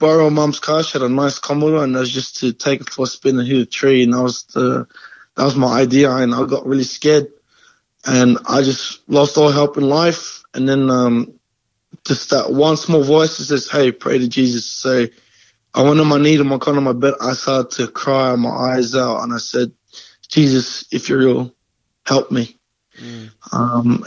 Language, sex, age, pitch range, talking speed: English, male, 20-39, 125-145 Hz, 215 wpm